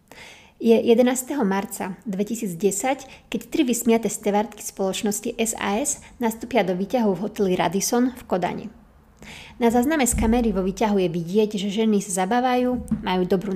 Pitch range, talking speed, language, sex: 195-235 Hz, 140 wpm, Slovak, female